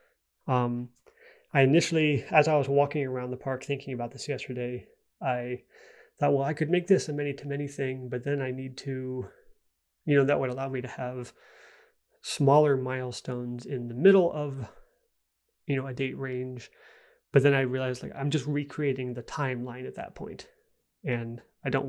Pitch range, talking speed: 125-145 Hz, 180 wpm